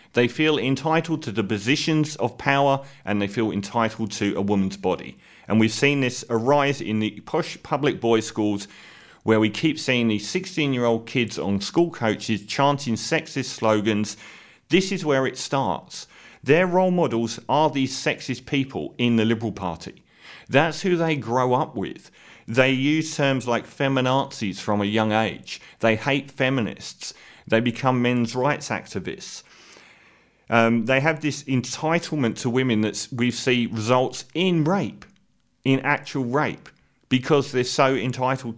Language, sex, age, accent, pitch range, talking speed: English, male, 40-59, British, 110-145 Hz, 155 wpm